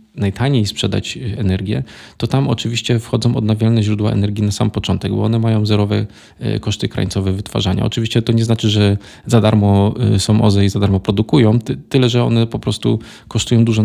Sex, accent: male, native